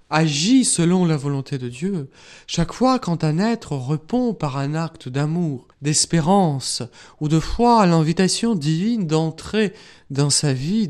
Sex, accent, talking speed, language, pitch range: male, French, 150 wpm, French, 145-205 Hz